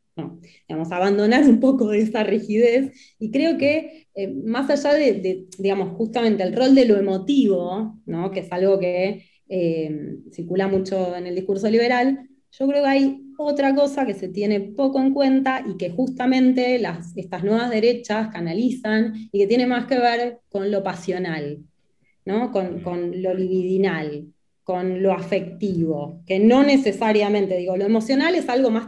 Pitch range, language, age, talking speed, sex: 180-240 Hz, Spanish, 20-39, 160 wpm, female